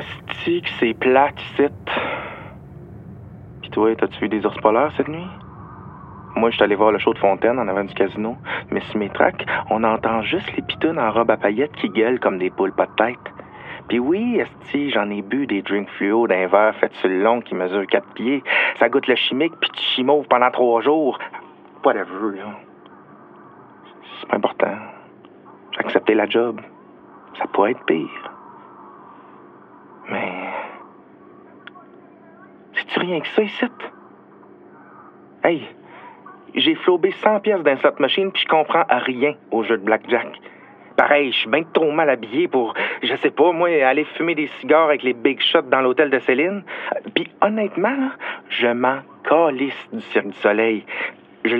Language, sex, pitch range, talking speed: French, male, 115-175 Hz, 170 wpm